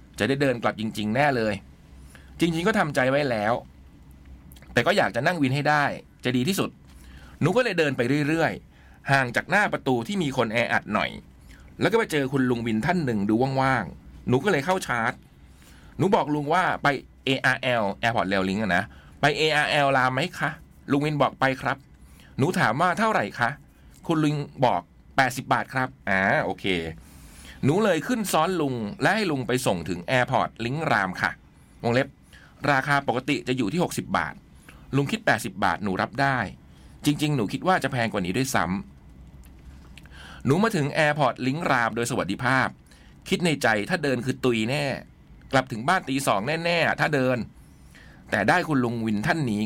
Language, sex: Thai, male